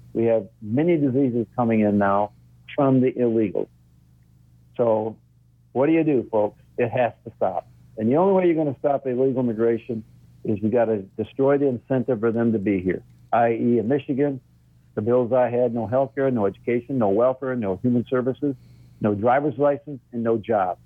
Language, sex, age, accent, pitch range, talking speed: English, male, 60-79, American, 110-140 Hz, 185 wpm